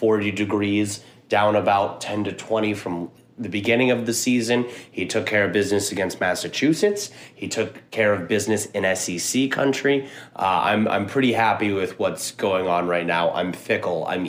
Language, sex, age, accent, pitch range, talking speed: English, male, 30-49, American, 95-125 Hz, 175 wpm